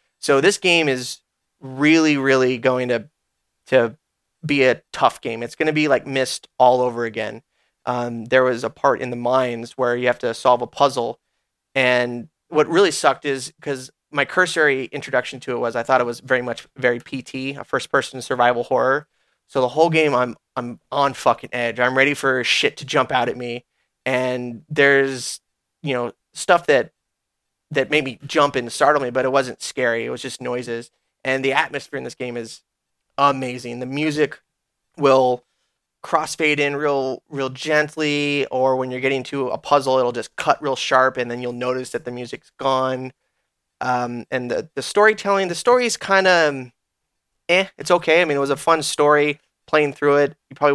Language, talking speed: English, 195 wpm